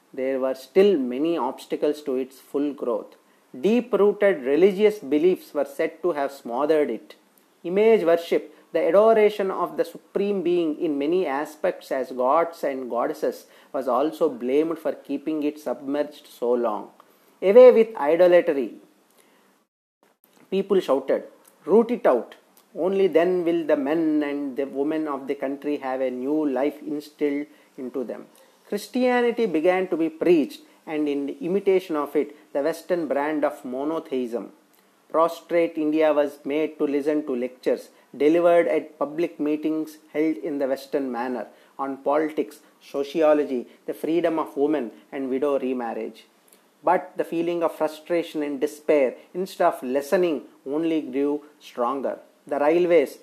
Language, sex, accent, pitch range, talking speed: English, male, Indian, 145-180 Hz, 140 wpm